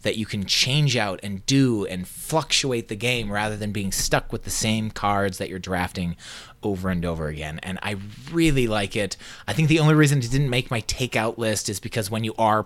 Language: English